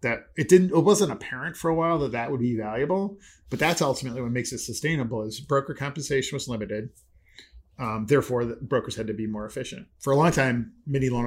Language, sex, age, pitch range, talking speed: English, male, 40-59, 115-150 Hz, 220 wpm